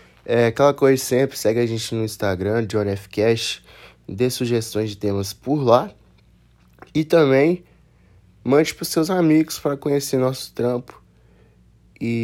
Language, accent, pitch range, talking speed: Portuguese, Brazilian, 105-140 Hz, 140 wpm